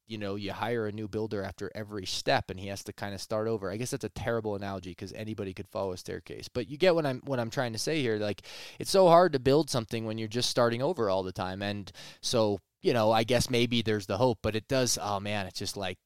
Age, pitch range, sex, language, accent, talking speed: 20-39, 105-135 Hz, male, English, American, 275 wpm